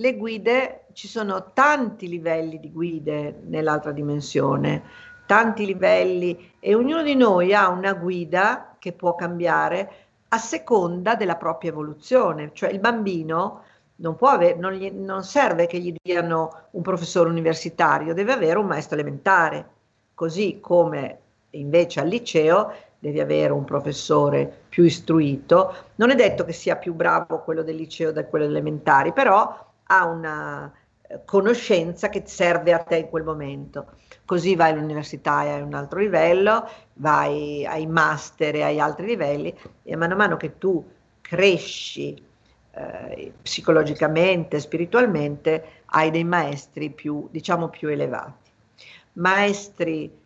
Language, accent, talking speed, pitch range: Italian, native, 140 wpm, 150-190 Hz